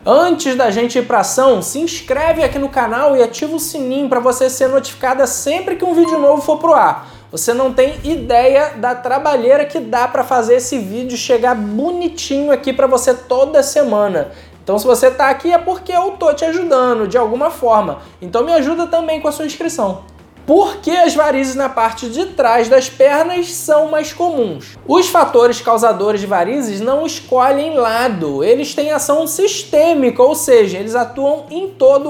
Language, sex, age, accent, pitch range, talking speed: Portuguese, male, 20-39, Brazilian, 250-315 Hz, 185 wpm